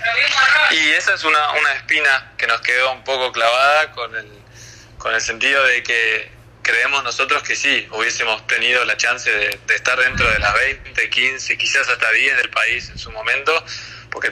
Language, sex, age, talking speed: English, male, 20-39, 185 wpm